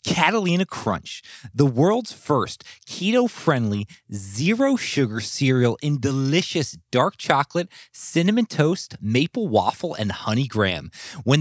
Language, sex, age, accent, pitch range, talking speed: English, male, 30-49, American, 115-175 Hz, 115 wpm